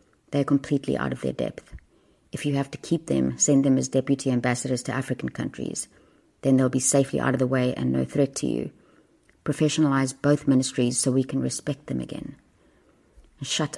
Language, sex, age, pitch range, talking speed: English, female, 30-49, 130-150 Hz, 190 wpm